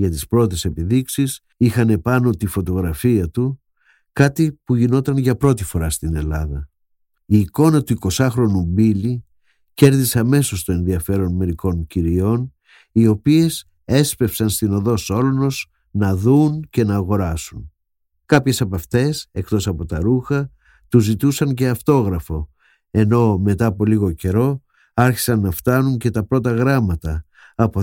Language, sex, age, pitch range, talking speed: Greek, male, 50-69, 95-130 Hz, 135 wpm